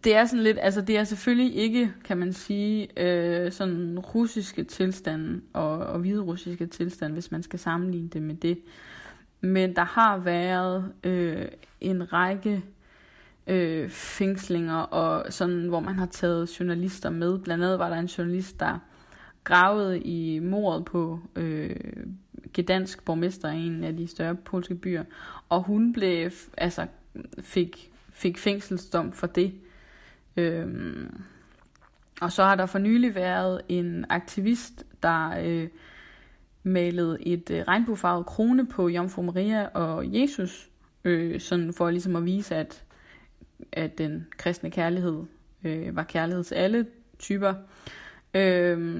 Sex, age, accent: female, 20-39, native